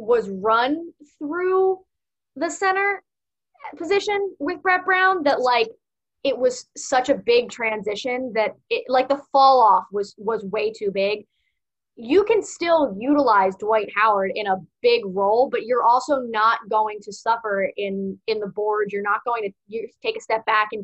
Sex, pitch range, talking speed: female, 210-295 Hz, 165 wpm